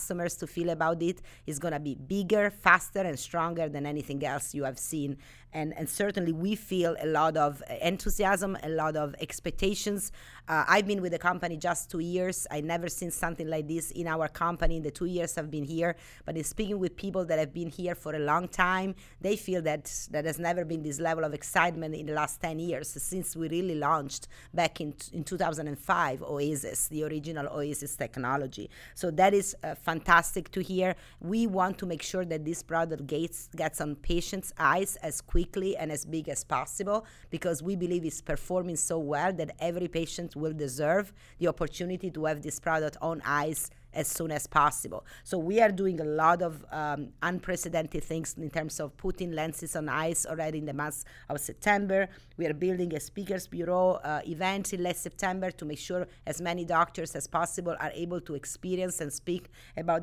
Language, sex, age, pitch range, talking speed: English, female, 30-49, 155-180 Hz, 200 wpm